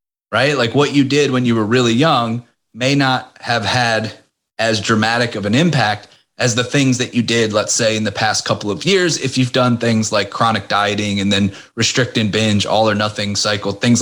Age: 30-49